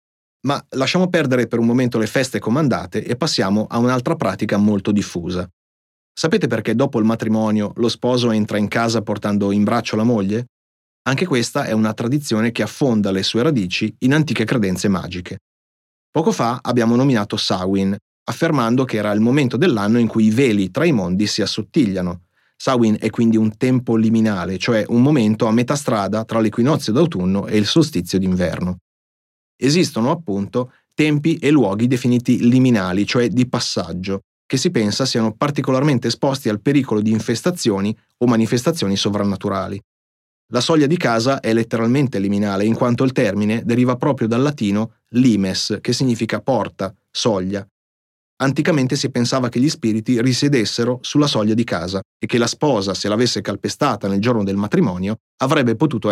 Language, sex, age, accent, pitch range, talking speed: Italian, male, 30-49, native, 100-125 Hz, 160 wpm